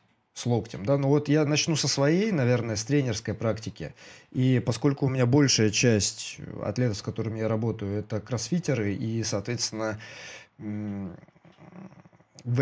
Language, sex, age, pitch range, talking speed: Russian, male, 20-39, 110-140 Hz, 140 wpm